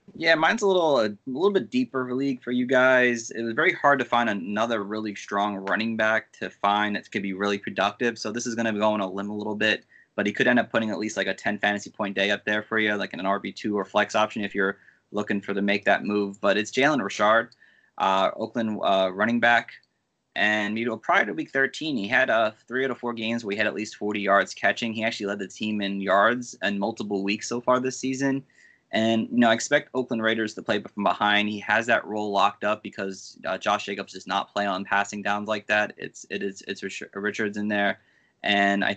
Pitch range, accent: 100-115 Hz, American